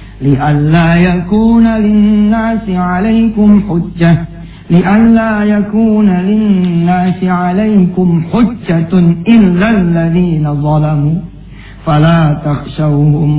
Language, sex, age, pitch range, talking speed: English, male, 50-69, 150-180 Hz, 65 wpm